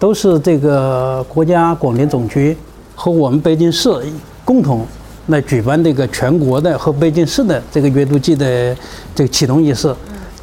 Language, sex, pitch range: Chinese, male, 140-185 Hz